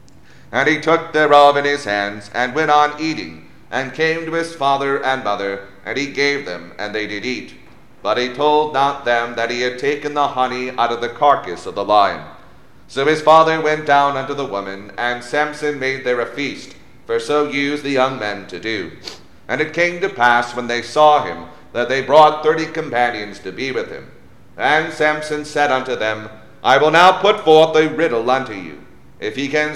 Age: 40-59